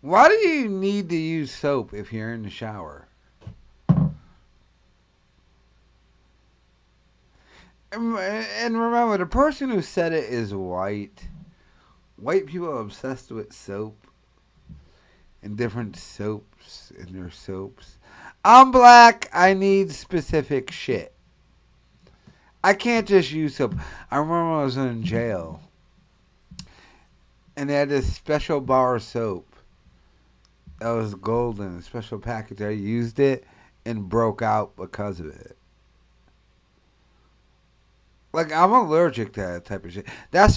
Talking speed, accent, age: 120 wpm, American, 50-69